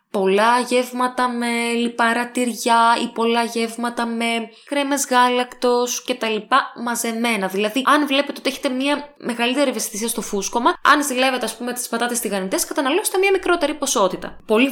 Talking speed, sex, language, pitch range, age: 140 wpm, female, Greek, 210-280 Hz, 10-29